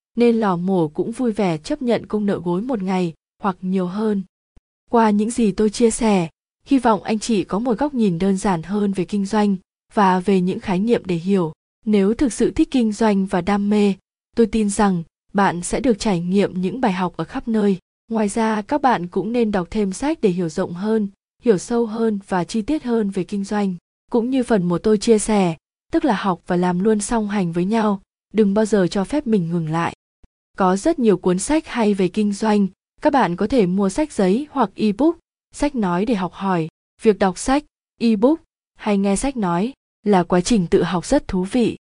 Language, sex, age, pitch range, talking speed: Vietnamese, female, 20-39, 185-230 Hz, 220 wpm